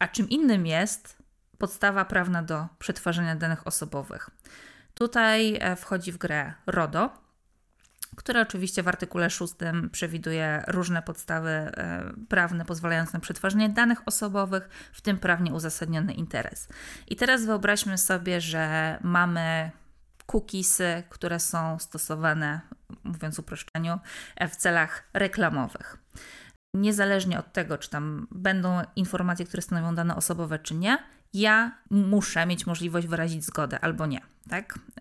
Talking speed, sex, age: 120 wpm, female, 20-39